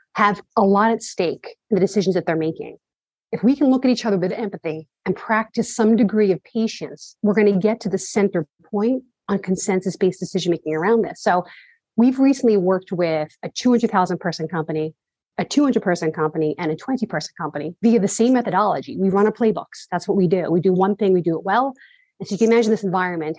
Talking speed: 210 wpm